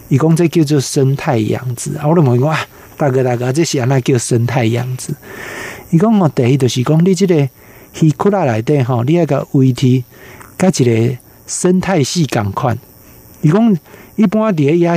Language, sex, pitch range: Chinese, male, 120-155 Hz